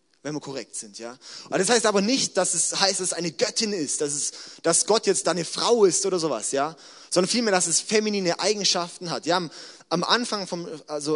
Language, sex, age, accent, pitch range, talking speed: German, male, 30-49, German, 145-190 Hz, 225 wpm